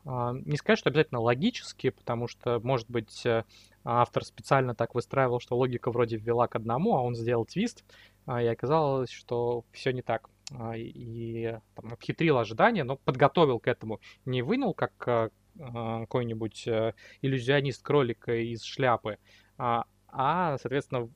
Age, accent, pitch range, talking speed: 20-39, native, 115-145 Hz, 130 wpm